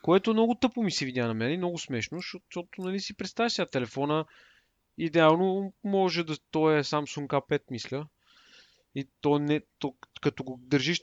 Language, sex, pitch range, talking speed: Bulgarian, male, 125-175 Hz, 170 wpm